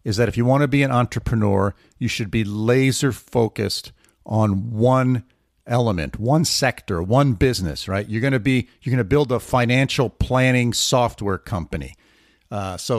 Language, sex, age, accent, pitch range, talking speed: English, male, 50-69, American, 110-145 Hz, 170 wpm